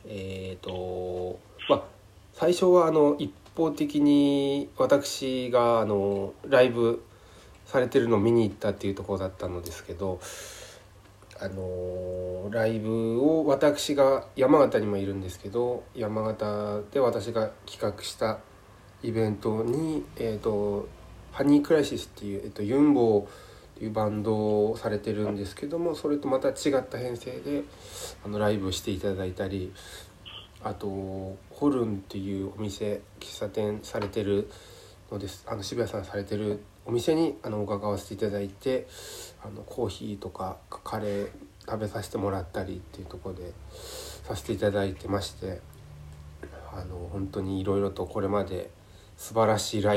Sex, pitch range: male, 95-115 Hz